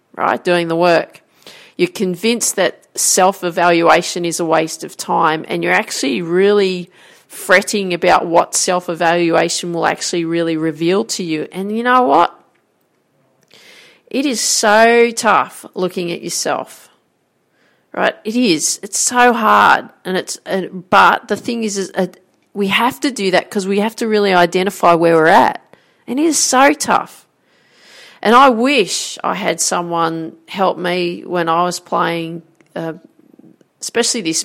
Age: 40-59